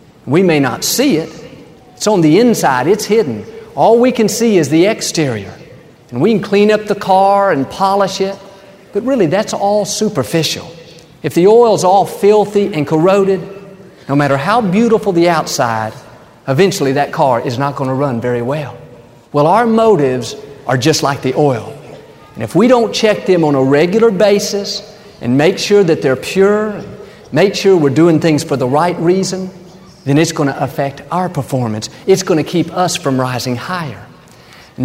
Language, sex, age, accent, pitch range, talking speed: English, male, 50-69, American, 140-200 Hz, 185 wpm